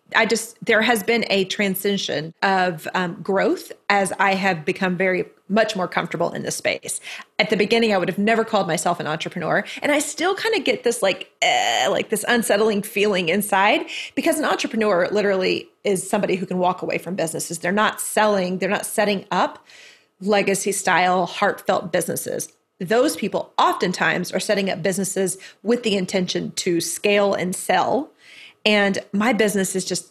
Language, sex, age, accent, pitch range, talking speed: English, female, 30-49, American, 185-225 Hz, 175 wpm